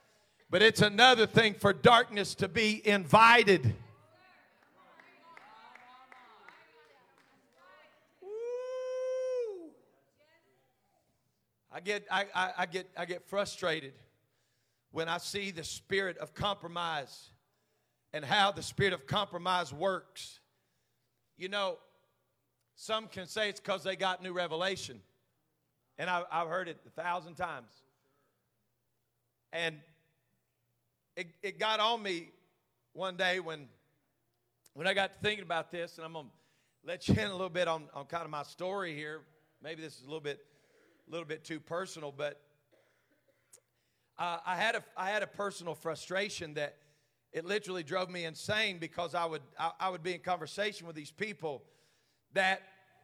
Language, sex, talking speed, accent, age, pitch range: English, male, 140 wpm, American, 40-59, 155-200 Hz